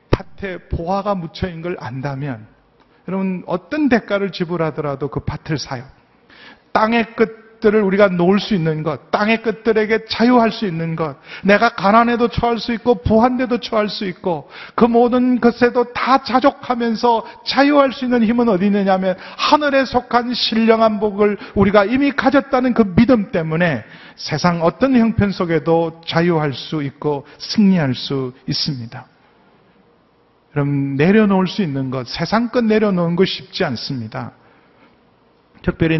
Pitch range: 145-225 Hz